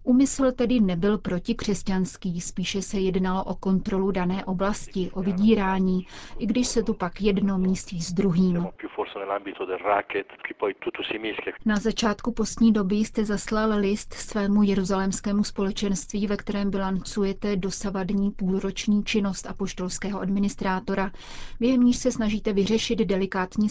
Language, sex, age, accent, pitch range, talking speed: Czech, female, 30-49, native, 190-220 Hz, 115 wpm